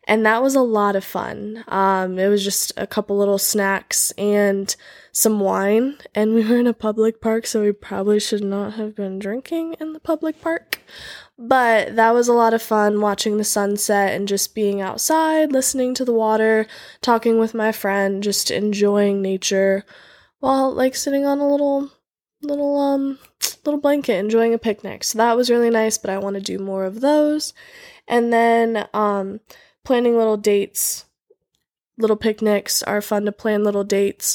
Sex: female